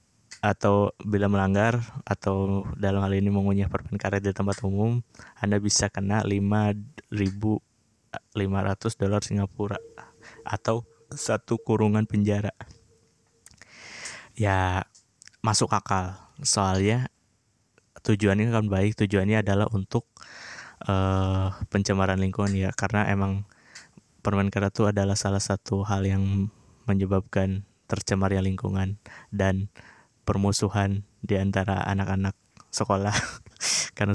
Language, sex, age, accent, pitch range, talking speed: Indonesian, male, 20-39, native, 100-110 Hz, 100 wpm